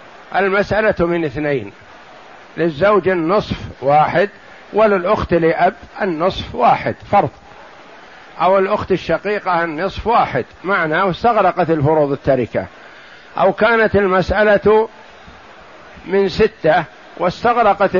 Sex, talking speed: male, 85 wpm